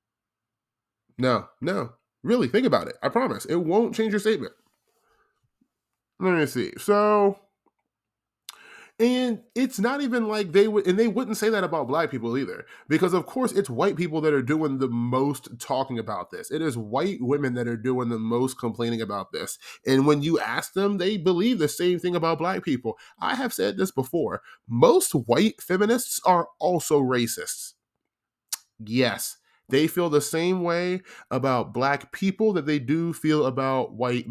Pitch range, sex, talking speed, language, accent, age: 125-190 Hz, male, 170 wpm, English, American, 20-39